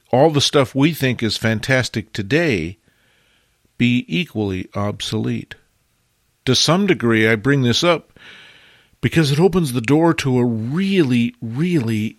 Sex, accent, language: male, American, English